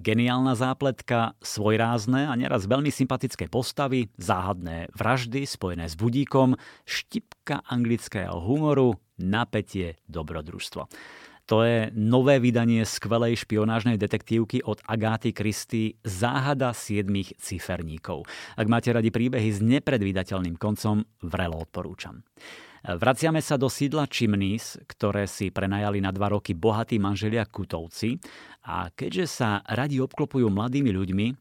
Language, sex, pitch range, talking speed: Slovak, male, 95-125 Hz, 115 wpm